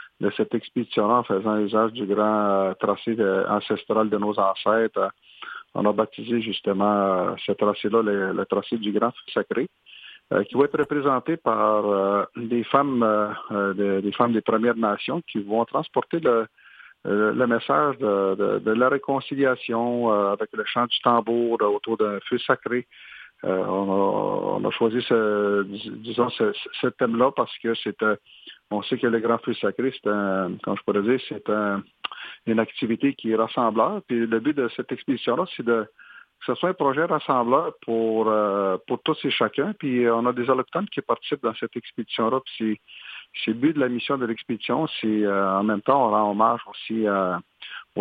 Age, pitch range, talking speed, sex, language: 50-69, 105-120 Hz, 175 wpm, male, French